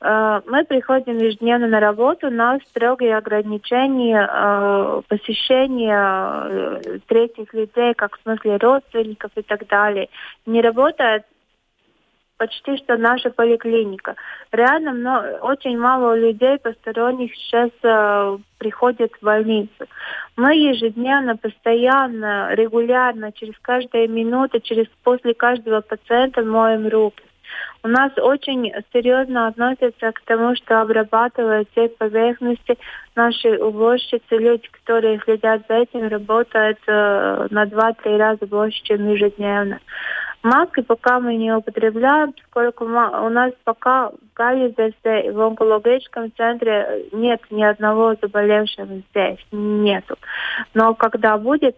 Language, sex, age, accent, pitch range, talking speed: Russian, female, 20-39, native, 215-245 Hz, 110 wpm